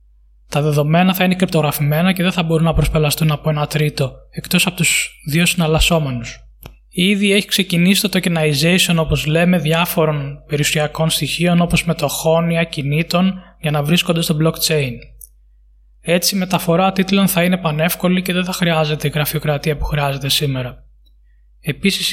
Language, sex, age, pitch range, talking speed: Greek, male, 20-39, 150-180 Hz, 150 wpm